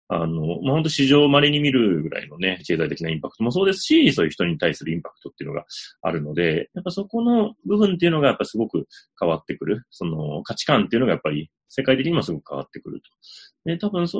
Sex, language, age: male, Japanese, 30-49